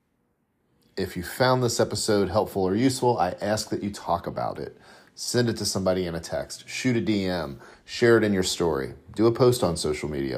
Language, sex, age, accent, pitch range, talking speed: English, male, 40-59, American, 80-105 Hz, 210 wpm